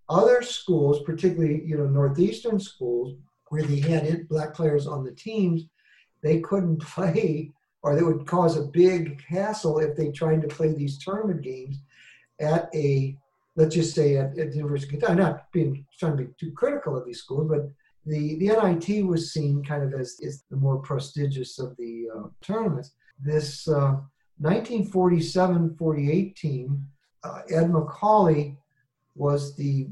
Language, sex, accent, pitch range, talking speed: English, male, American, 140-165 Hz, 160 wpm